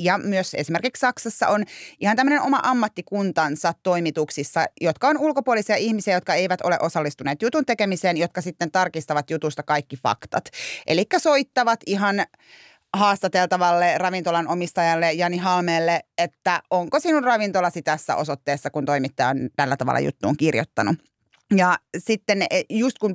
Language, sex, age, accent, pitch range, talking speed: Finnish, female, 30-49, native, 165-205 Hz, 130 wpm